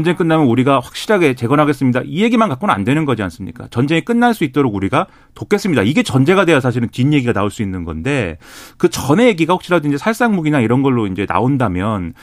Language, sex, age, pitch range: Korean, male, 40-59, 120-165 Hz